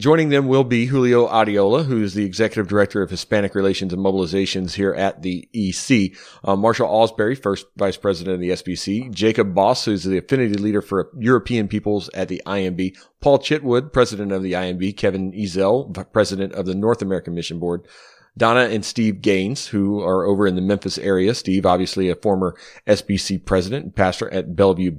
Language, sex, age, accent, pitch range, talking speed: English, male, 30-49, American, 95-115 Hz, 185 wpm